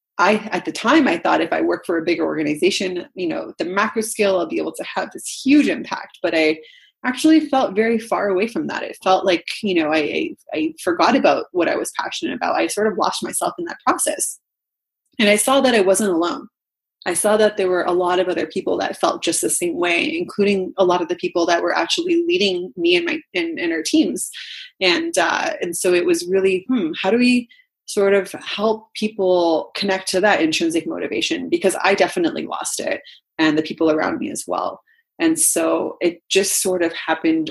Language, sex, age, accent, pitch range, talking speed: English, female, 20-39, American, 165-270 Hz, 220 wpm